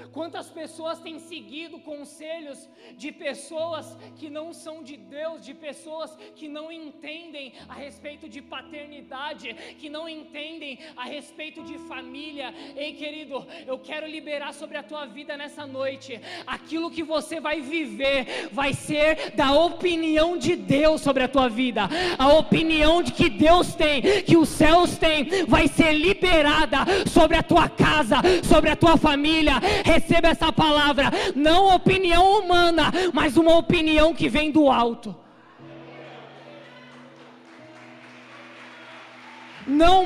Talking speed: 135 wpm